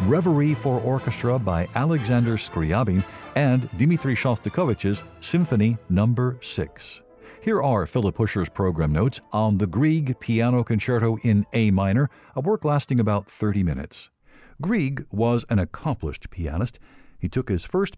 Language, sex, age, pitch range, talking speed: English, male, 60-79, 95-130 Hz, 135 wpm